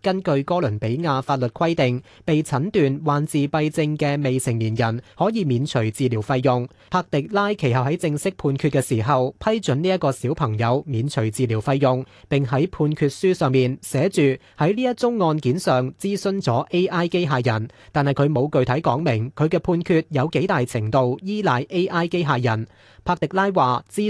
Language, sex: Chinese, male